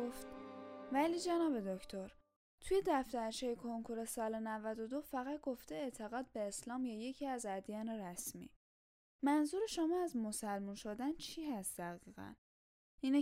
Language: Persian